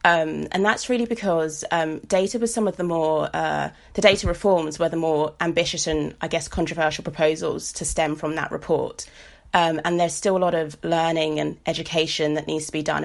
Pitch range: 155-175 Hz